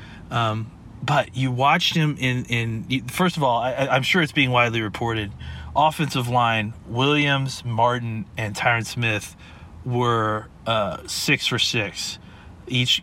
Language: English